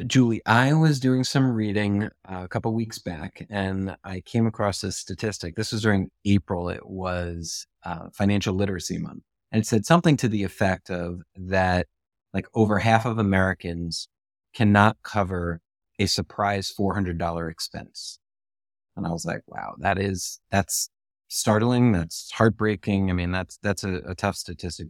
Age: 30-49